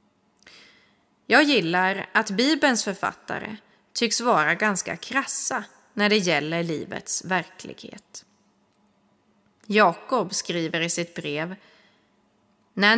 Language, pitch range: Swedish, 180-225 Hz